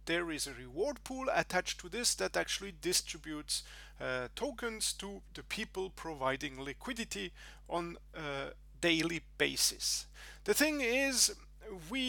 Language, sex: English, male